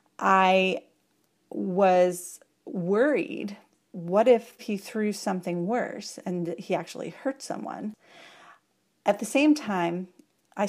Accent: American